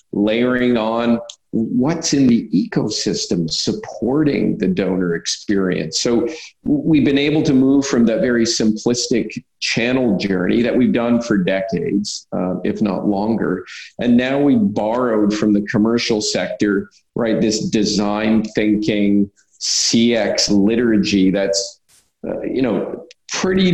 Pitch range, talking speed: 105-125 Hz, 125 wpm